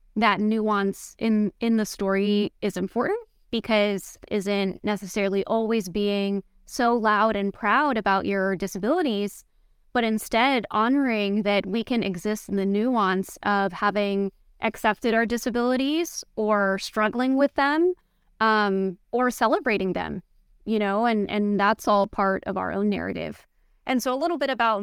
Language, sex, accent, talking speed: English, female, American, 145 wpm